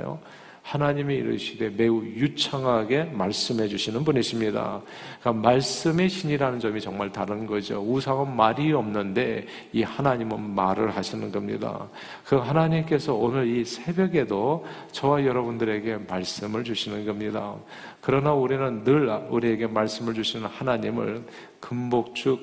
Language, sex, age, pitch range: Korean, male, 40-59, 115-150 Hz